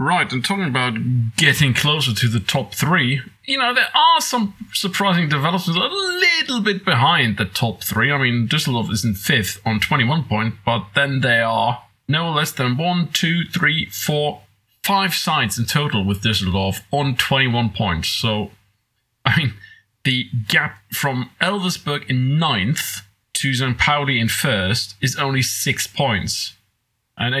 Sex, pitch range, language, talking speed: male, 110-150 Hz, English, 155 wpm